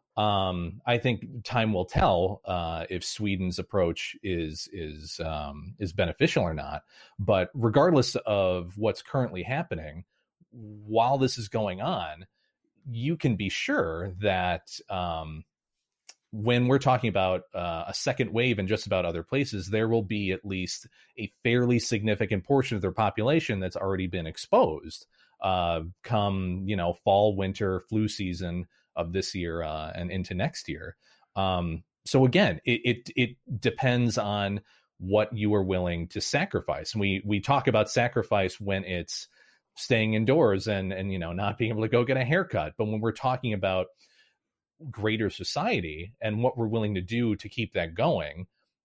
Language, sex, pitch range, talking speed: English, male, 90-120 Hz, 160 wpm